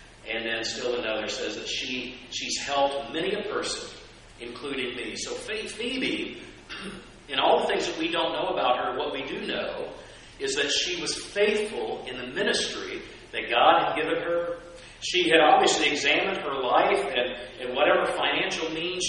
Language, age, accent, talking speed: English, 40-59, American, 175 wpm